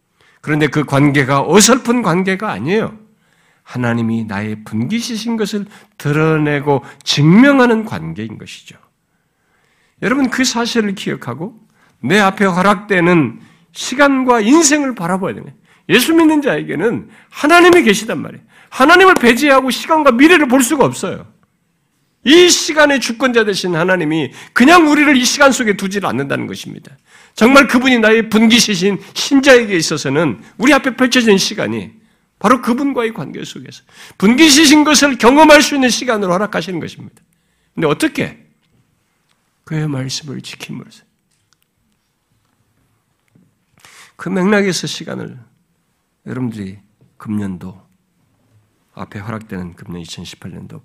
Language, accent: Korean, native